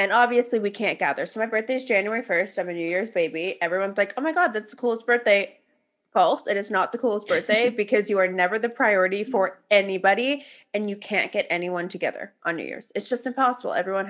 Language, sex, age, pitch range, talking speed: English, female, 20-39, 190-245 Hz, 225 wpm